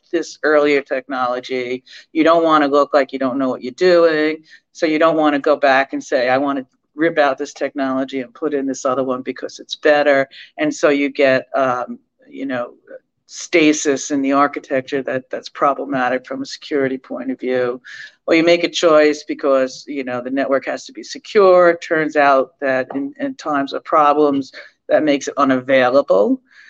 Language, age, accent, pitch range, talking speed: English, 50-69, American, 135-165 Hz, 190 wpm